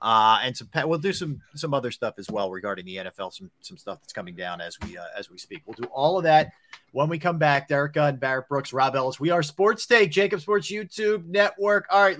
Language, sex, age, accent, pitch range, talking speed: English, male, 40-59, American, 130-170 Hz, 250 wpm